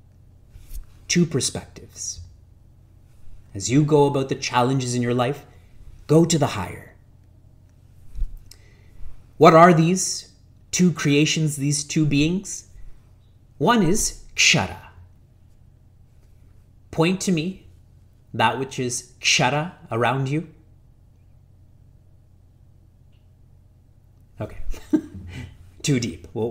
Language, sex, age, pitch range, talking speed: English, male, 30-49, 100-140 Hz, 90 wpm